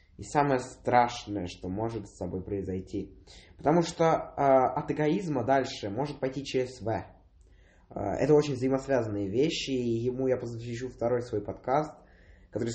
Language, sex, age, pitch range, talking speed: English, male, 20-39, 95-130 Hz, 145 wpm